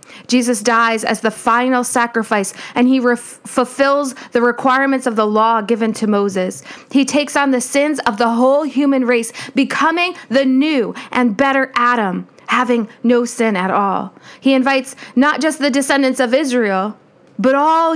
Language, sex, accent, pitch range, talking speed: English, female, American, 225-275 Hz, 160 wpm